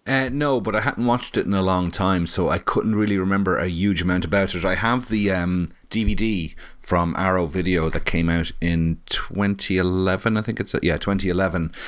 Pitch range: 85-100 Hz